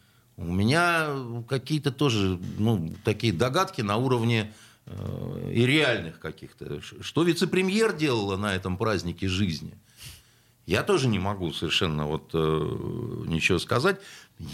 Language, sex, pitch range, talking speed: Russian, male, 115-175 Hz, 115 wpm